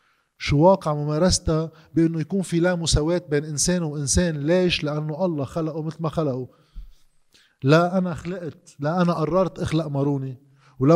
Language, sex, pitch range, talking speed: Arabic, male, 130-165 Hz, 150 wpm